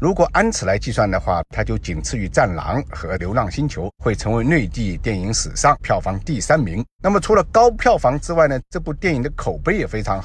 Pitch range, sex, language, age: 95-140 Hz, male, Chinese, 50-69